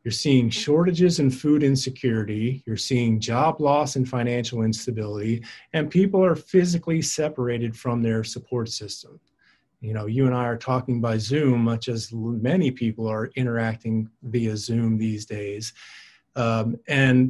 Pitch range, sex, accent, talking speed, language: 110-130 Hz, male, American, 150 wpm, English